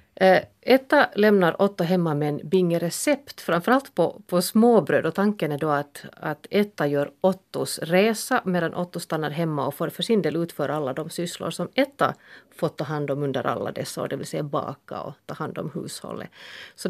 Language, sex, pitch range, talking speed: Finnish, female, 155-205 Hz, 190 wpm